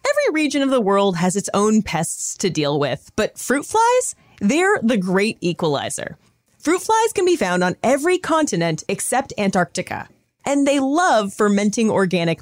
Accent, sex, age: American, female, 30-49